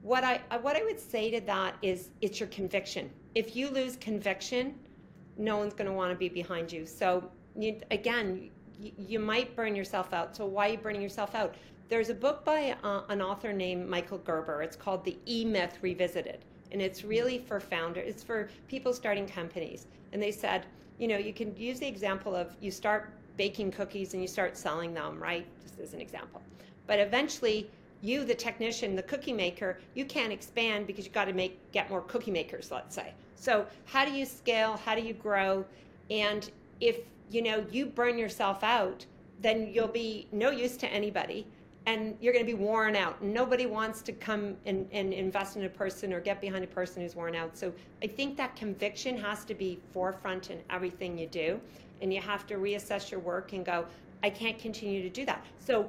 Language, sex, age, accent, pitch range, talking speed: English, female, 40-59, American, 190-225 Hz, 205 wpm